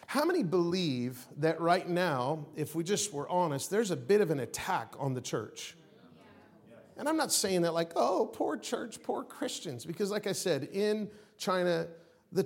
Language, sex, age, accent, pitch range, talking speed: English, male, 40-59, American, 140-190 Hz, 185 wpm